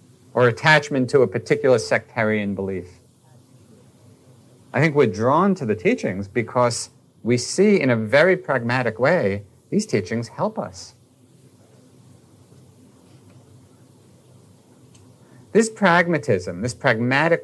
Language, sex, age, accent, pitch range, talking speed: English, male, 50-69, American, 110-135 Hz, 105 wpm